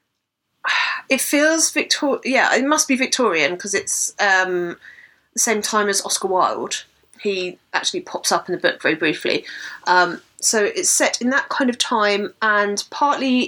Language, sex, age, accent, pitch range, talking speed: English, female, 30-49, British, 195-240 Hz, 165 wpm